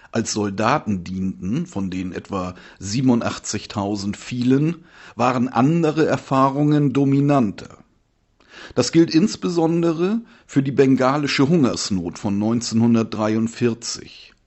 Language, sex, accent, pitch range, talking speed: German, male, German, 105-140 Hz, 85 wpm